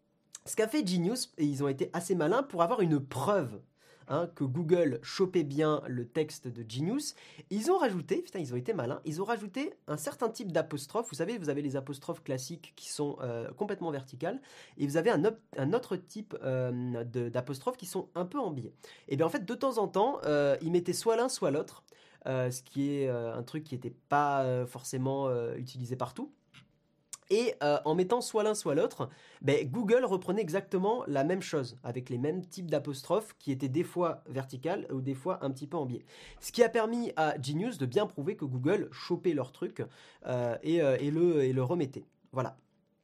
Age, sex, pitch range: 20-39, male, 135-185 Hz